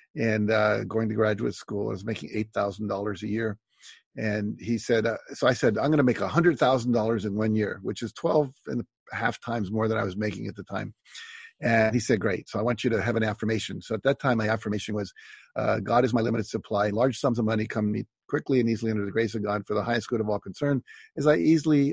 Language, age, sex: English, 50-69, male